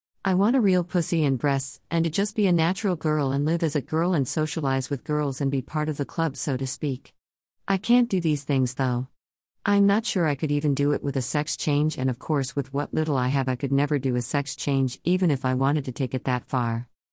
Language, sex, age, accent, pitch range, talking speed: English, female, 50-69, American, 130-155 Hz, 260 wpm